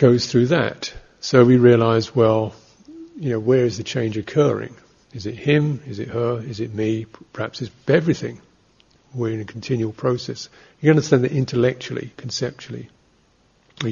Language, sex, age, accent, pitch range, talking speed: English, male, 50-69, British, 110-135 Hz, 165 wpm